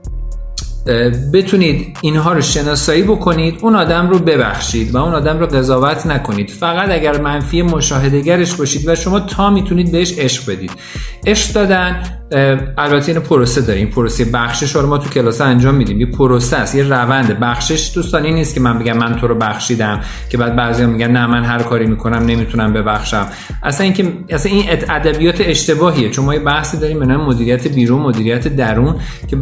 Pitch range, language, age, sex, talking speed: 120-170 Hz, Persian, 50-69, male, 165 wpm